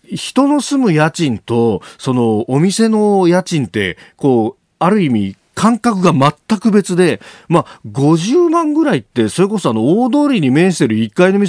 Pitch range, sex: 135-225 Hz, male